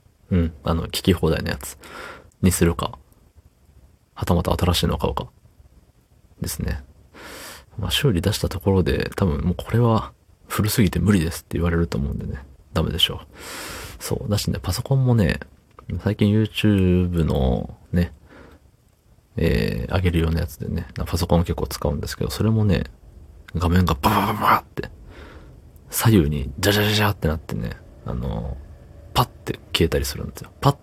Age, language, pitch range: 40-59, Japanese, 80-105 Hz